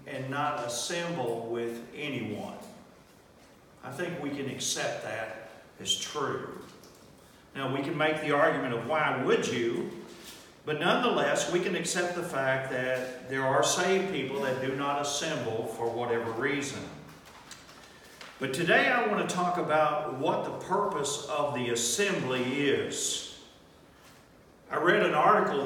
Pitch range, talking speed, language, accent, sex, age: 125-155 Hz, 140 wpm, English, American, male, 50-69